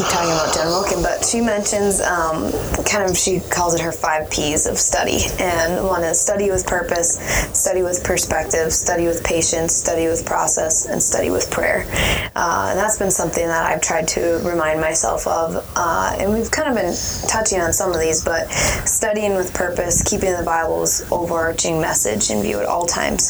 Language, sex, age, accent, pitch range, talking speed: English, female, 20-39, American, 160-185 Hz, 190 wpm